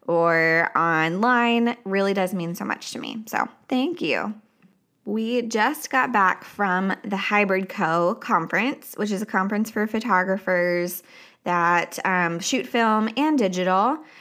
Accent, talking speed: American, 140 wpm